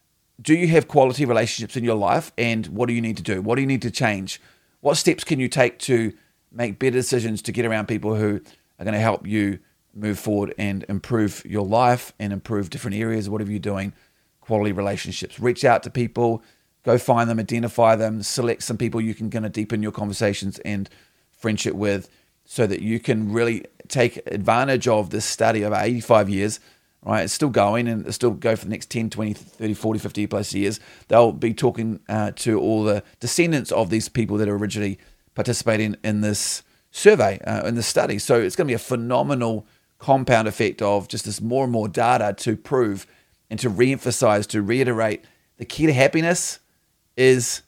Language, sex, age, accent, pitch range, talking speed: English, male, 30-49, Australian, 105-120 Hz, 200 wpm